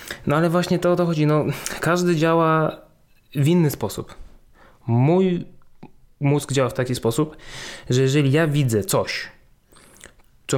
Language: Polish